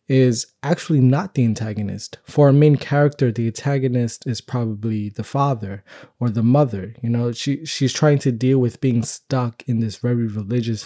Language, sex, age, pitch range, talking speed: English, male, 20-39, 115-135 Hz, 175 wpm